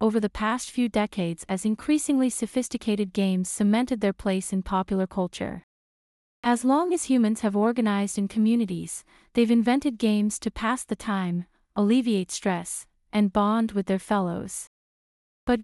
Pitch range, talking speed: 200-245 Hz, 145 wpm